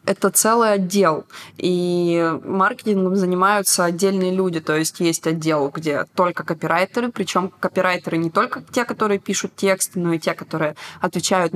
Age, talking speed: 20-39, 145 wpm